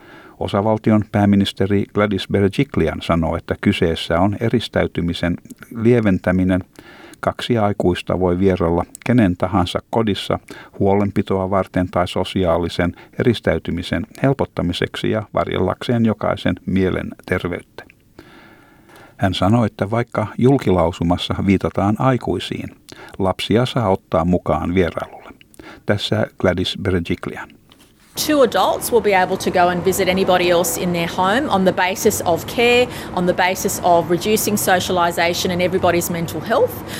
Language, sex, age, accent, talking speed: Finnish, male, 60-79, native, 115 wpm